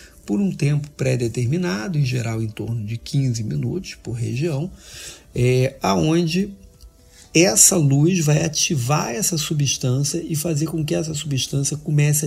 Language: Portuguese